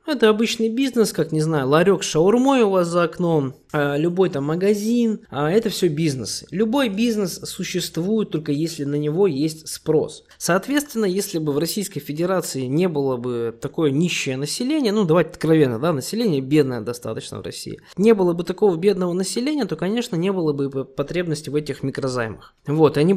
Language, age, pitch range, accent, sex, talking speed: Russian, 20-39, 145-205 Hz, native, male, 170 wpm